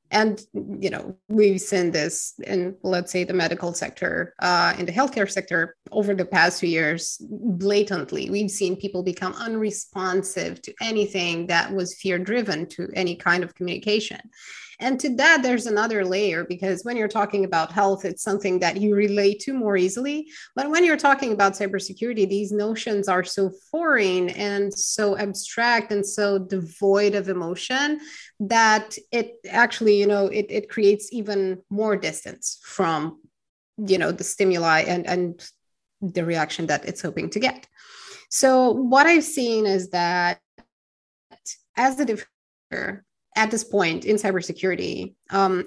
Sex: female